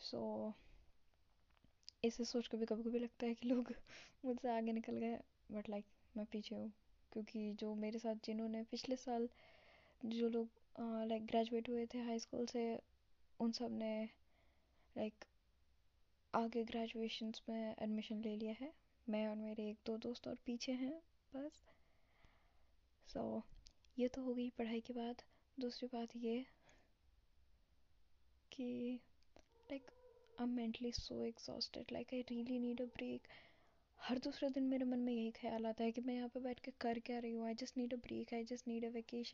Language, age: Hindi, 10-29